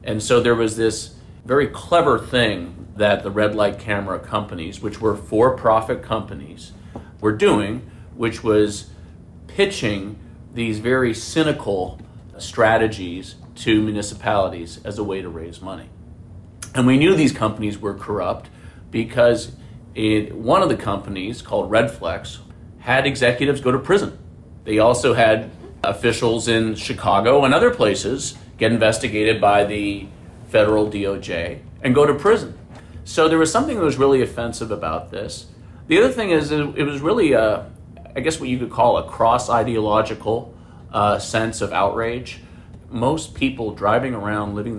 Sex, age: male, 40-59